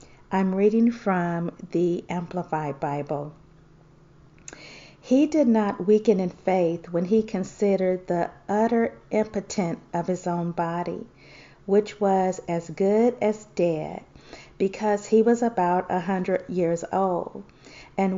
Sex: female